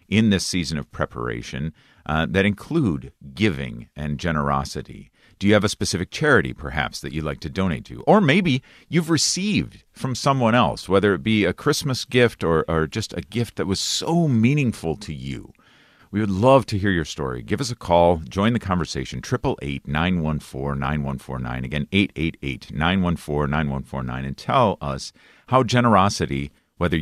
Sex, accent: male, American